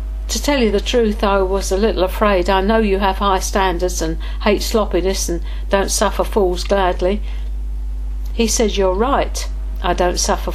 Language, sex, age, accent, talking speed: English, female, 60-79, British, 175 wpm